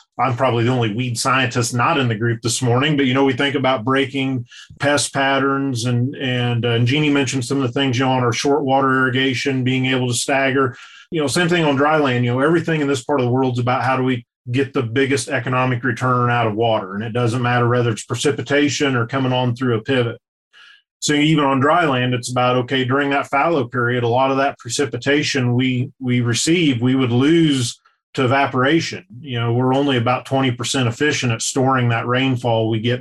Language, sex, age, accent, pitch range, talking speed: English, male, 40-59, American, 120-140 Hz, 220 wpm